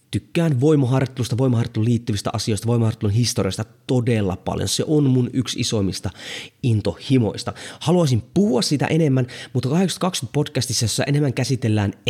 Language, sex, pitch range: Finnish, male, 105-150 Hz